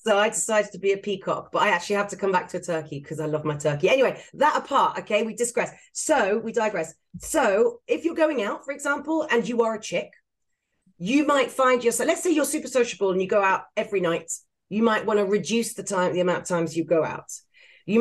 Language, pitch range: English, 175-240 Hz